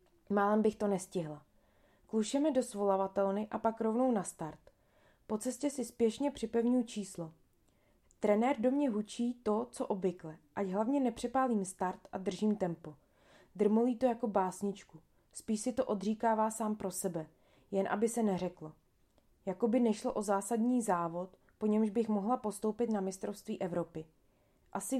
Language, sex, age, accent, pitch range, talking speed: Czech, female, 20-39, native, 180-230 Hz, 145 wpm